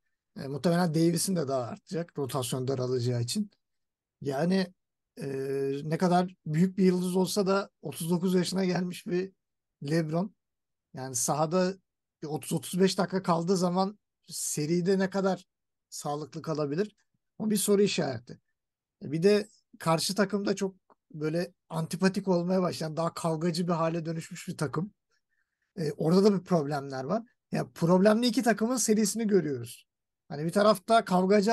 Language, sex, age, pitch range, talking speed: Turkish, male, 50-69, 170-210 Hz, 135 wpm